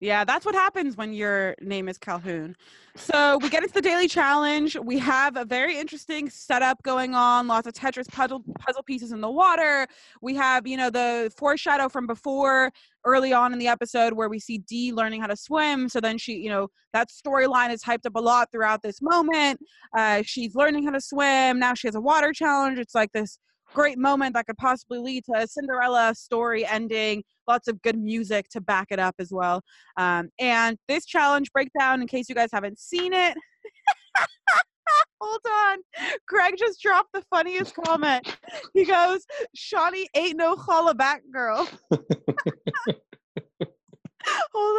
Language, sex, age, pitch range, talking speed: English, female, 20-39, 230-330 Hz, 180 wpm